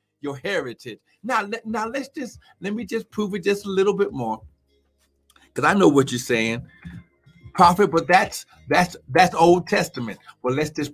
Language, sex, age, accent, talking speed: English, male, 60-79, American, 180 wpm